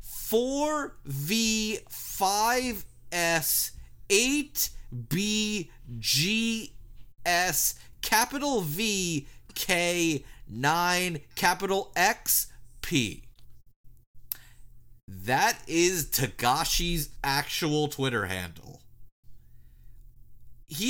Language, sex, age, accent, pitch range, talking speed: English, male, 30-49, American, 145-220 Hz, 40 wpm